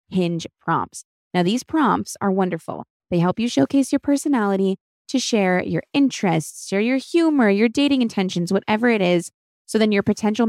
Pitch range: 175-240 Hz